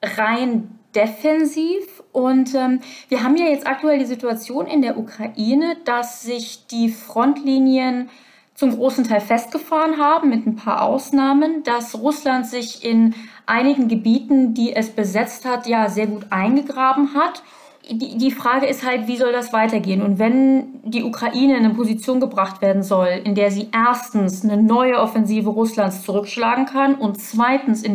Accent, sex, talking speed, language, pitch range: German, female, 160 wpm, German, 205-255 Hz